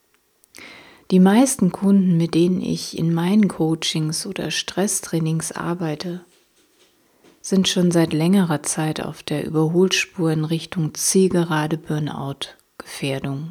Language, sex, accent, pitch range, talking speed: German, female, German, 155-190 Hz, 100 wpm